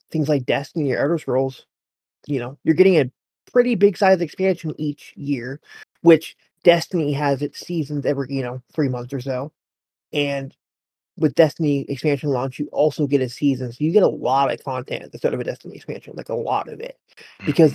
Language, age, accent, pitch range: English, 30-49, American, 125-150 Hz